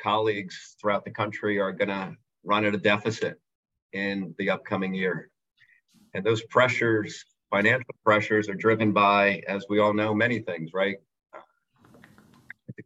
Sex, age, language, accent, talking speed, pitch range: male, 40-59, English, American, 145 wpm, 105-115 Hz